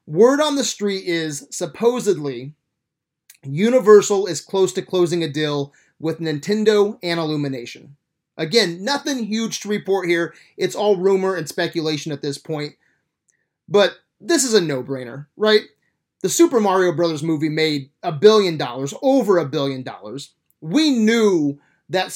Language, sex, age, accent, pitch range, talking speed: English, male, 30-49, American, 155-215 Hz, 145 wpm